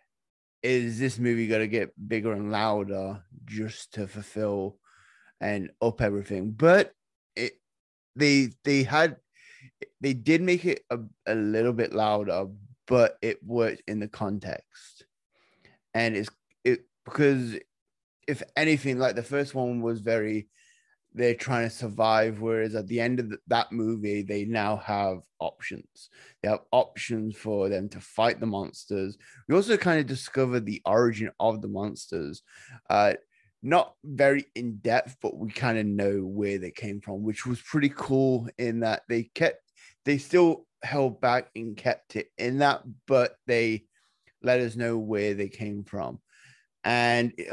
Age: 20-39